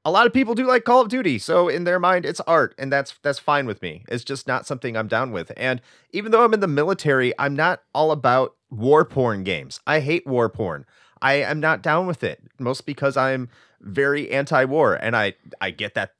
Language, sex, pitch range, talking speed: English, male, 110-160 Hz, 230 wpm